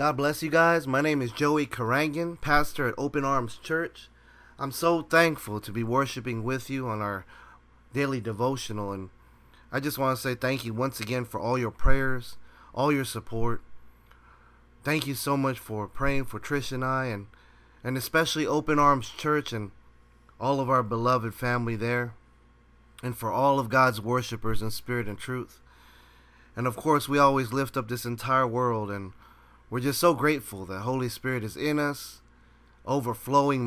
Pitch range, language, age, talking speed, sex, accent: 105-140 Hz, English, 30-49, 175 wpm, male, American